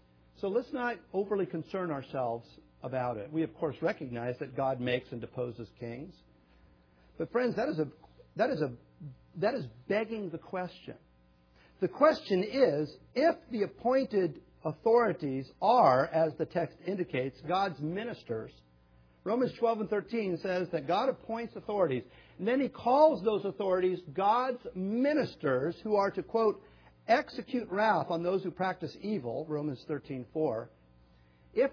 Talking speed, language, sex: 145 wpm, English, male